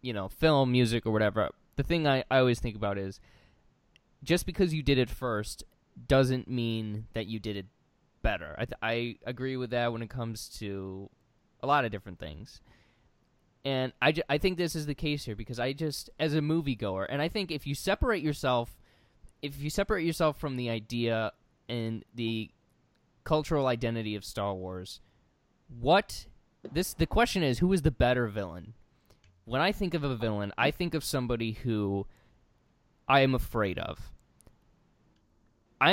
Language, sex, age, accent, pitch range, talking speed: English, male, 20-39, American, 110-150 Hz, 175 wpm